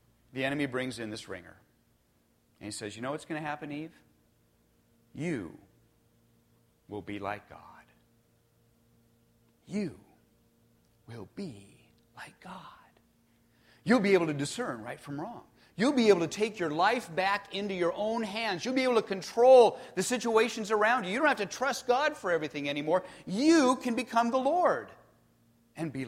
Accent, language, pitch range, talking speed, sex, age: American, English, 115-185 Hz, 165 wpm, male, 50-69